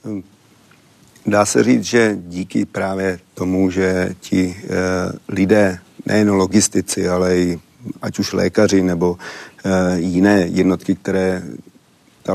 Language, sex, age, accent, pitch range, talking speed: Czech, male, 40-59, native, 90-100 Hz, 105 wpm